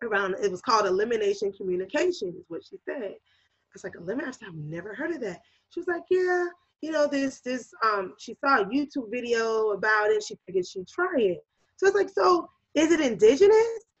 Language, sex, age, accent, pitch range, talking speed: English, female, 20-39, American, 195-325 Hz, 200 wpm